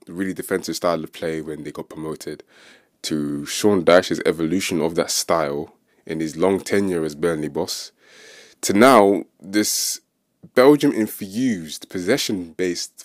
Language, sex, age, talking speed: English, male, 20-39, 130 wpm